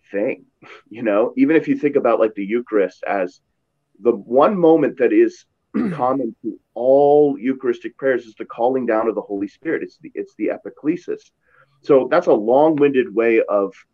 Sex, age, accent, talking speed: male, 30-49, American, 180 wpm